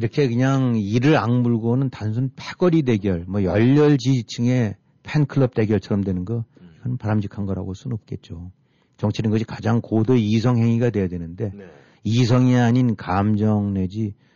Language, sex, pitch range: Korean, male, 100-135 Hz